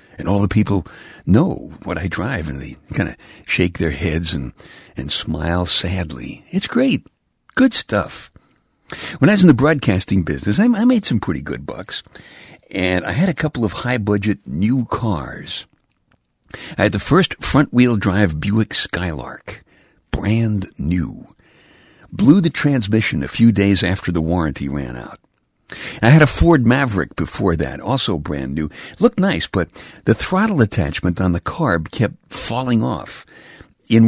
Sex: male